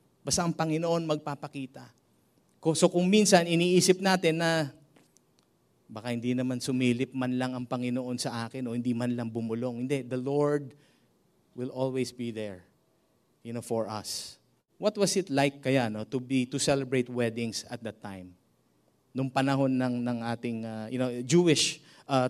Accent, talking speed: Filipino, 160 wpm